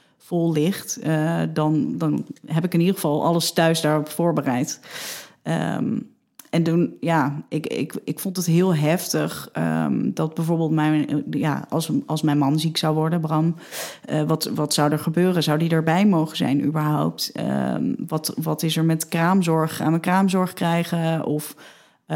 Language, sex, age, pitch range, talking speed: Dutch, female, 30-49, 150-170 Hz, 170 wpm